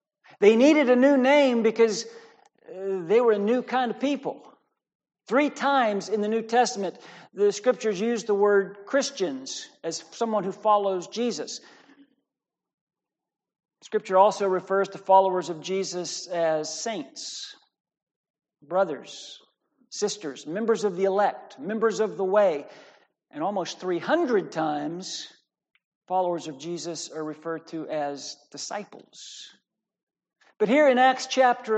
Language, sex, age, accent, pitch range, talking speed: English, male, 50-69, American, 190-250 Hz, 125 wpm